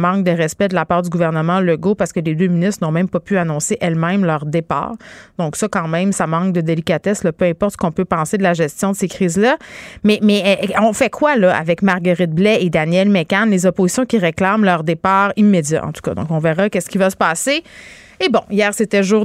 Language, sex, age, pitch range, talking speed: French, female, 30-49, 180-220 Hz, 245 wpm